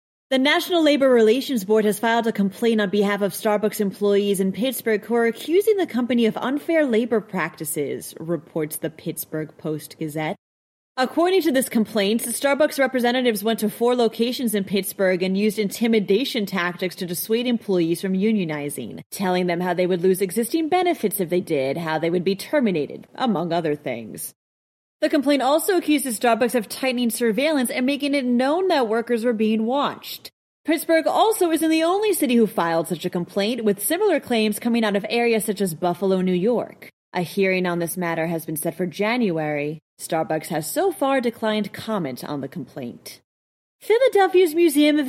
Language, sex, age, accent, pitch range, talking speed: English, female, 30-49, American, 180-275 Hz, 175 wpm